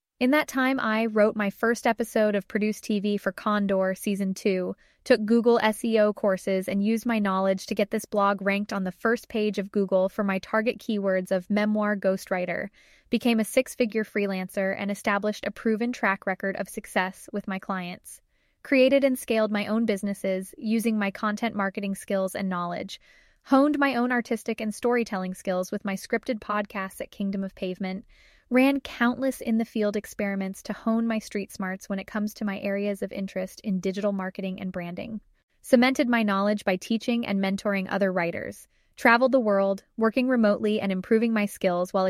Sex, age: female, 10-29